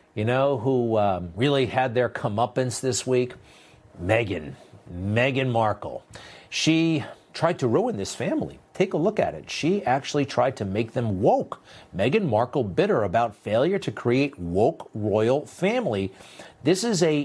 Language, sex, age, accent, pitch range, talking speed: English, male, 50-69, American, 115-175 Hz, 155 wpm